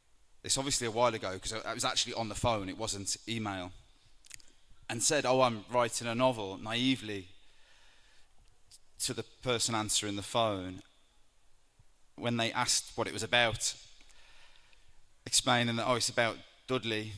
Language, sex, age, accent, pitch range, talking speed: Italian, male, 20-39, British, 105-120 Hz, 145 wpm